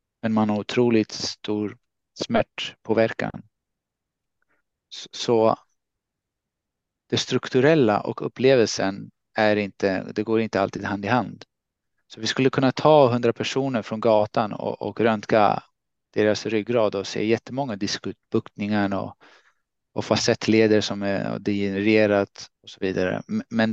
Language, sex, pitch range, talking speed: Swedish, male, 105-130 Hz, 120 wpm